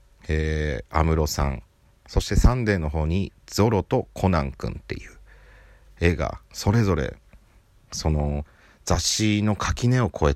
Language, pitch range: Japanese, 75-110 Hz